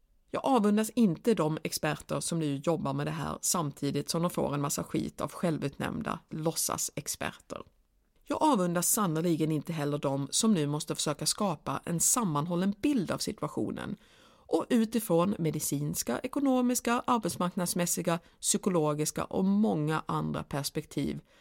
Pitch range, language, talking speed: 155-235 Hz, Swedish, 130 wpm